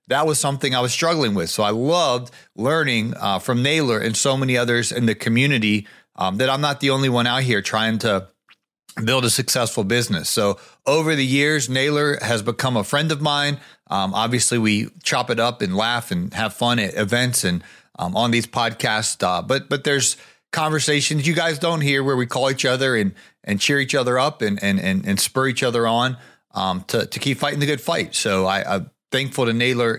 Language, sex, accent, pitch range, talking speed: English, male, American, 115-155 Hz, 210 wpm